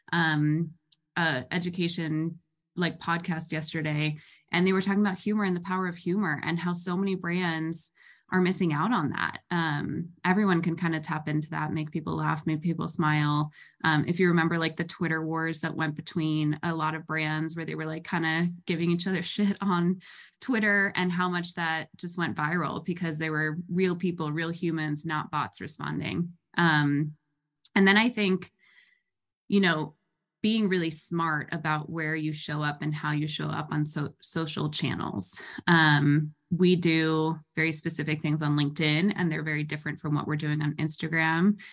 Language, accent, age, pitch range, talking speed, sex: English, American, 20-39, 155-175 Hz, 180 wpm, female